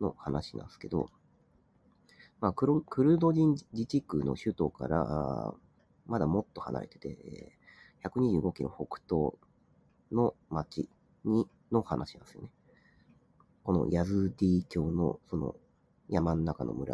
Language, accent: Japanese, native